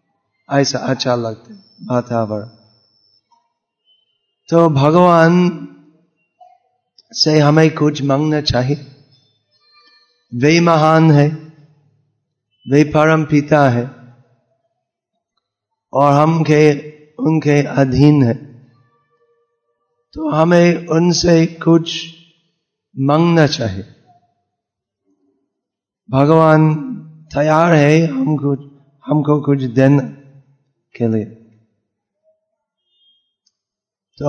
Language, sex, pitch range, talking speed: Hindi, male, 135-165 Hz, 70 wpm